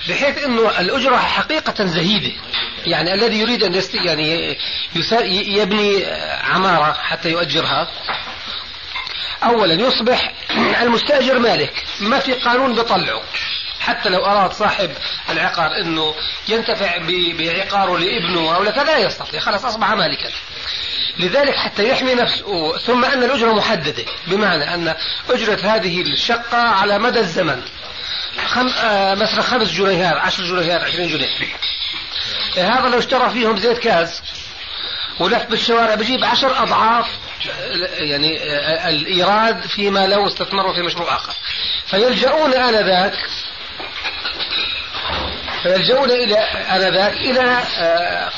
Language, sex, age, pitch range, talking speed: Arabic, male, 40-59, 175-235 Hz, 115 wpm